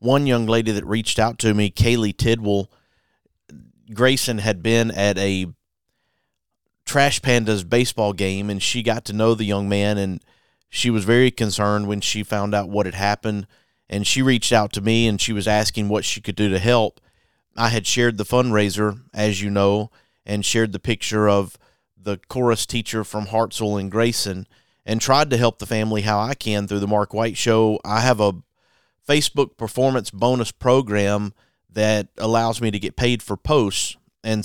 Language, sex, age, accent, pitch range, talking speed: English, male, 40-59, American, 105-120 Hz, 185 wpm